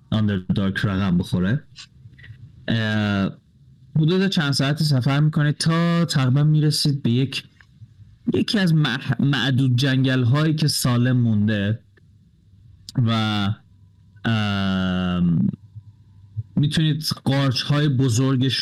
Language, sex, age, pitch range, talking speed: Persian, male, 30-49, 110-140 Hz, 95 wpm